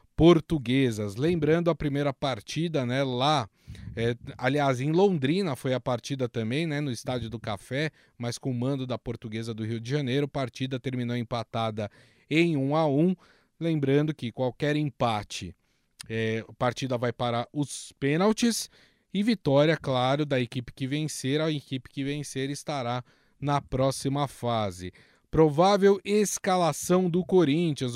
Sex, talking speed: male, 150 wpm